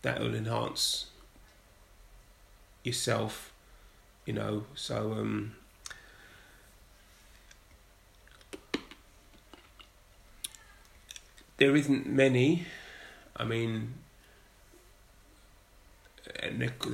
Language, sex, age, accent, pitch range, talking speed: English, male, 30-49, British, 100-115 Hz, 50 wpm